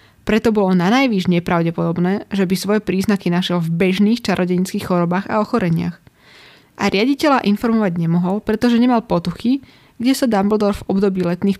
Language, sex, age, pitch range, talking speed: Slovak, female, 20-39, 180-215 Hz, 150 wpm